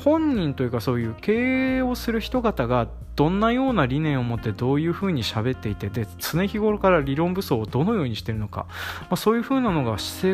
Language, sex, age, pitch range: Japanese, male, 20-39, 110-185 Hz